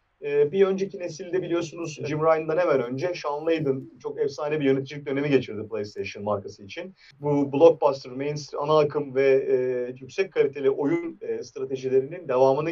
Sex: male